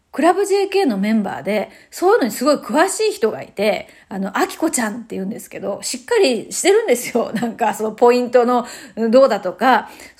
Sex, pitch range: female, 210-290 Hz